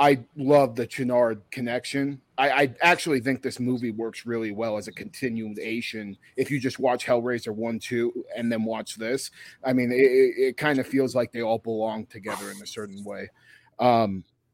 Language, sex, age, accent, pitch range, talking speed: English, male, 30-49, American, 120-150 Hz, 180 wpm